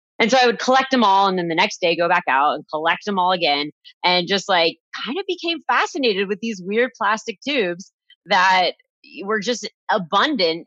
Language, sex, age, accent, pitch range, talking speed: English, female, 30-49, American, 160-220 Hz, 200 wpm